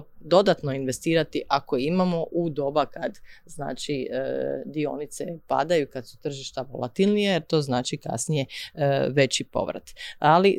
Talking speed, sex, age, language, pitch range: 120 wpm, female, 30-49, Croatian, 135-165 Hz